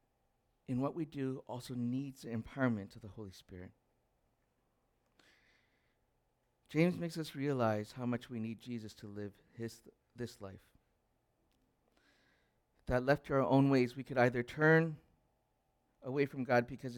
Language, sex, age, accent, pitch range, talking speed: English, male, 50-69, American, 110-140 Hz, 140 wpm